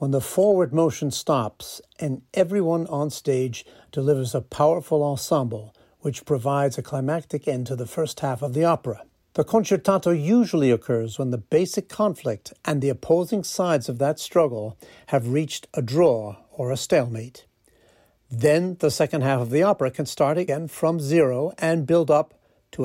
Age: 60-79